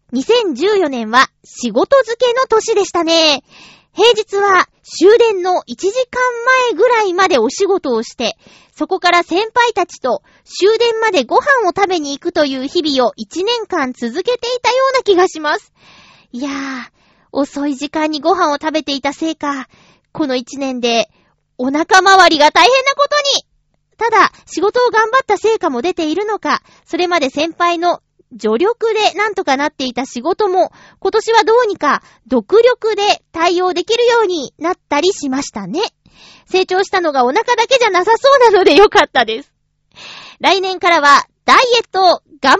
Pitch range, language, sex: 285-420 Hz, Japanese, female